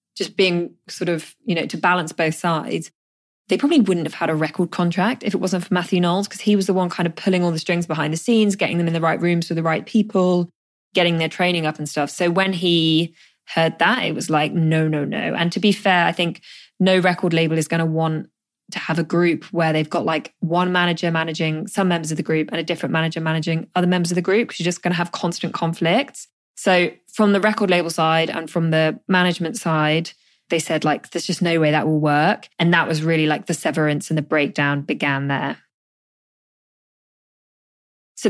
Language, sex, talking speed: English, female, 230 wpm